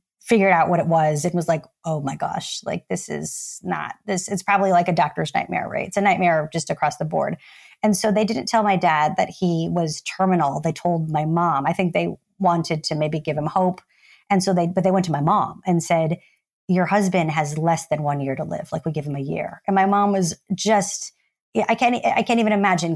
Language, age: English, 30-49